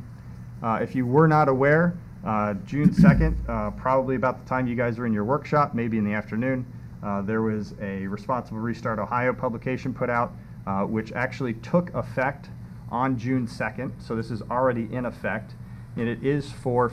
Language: English